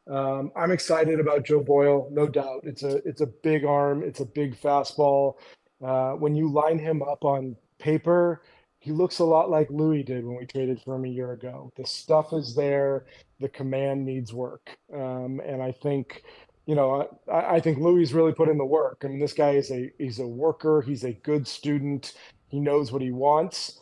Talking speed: 205 wpm